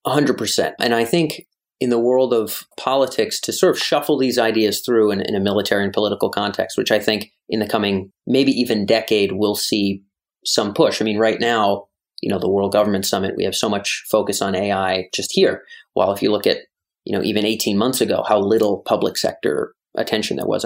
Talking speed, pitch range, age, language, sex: 215 wpm, 105-145 Hz, 30-49, English, male